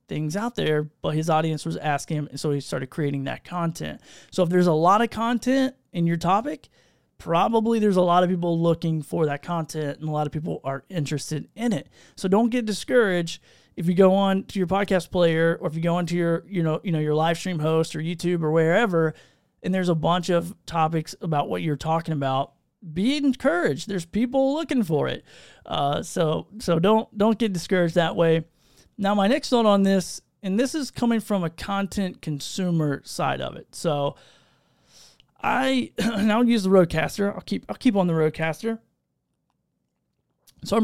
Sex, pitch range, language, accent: male, 155-200 Hz, English, American